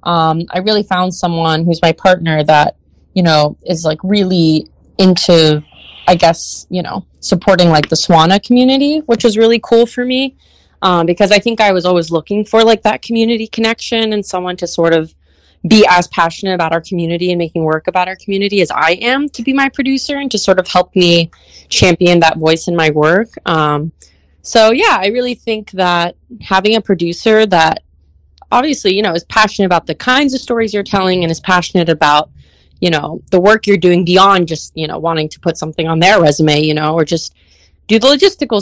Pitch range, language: 165-220 Hz, English